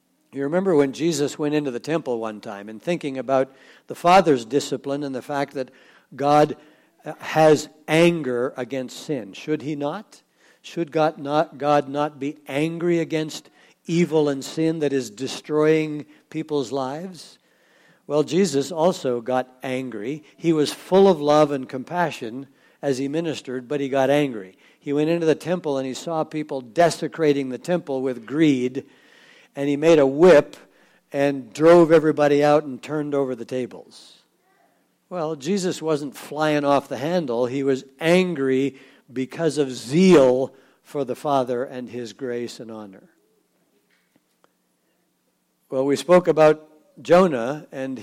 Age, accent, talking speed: 60-79, American, 145 wpm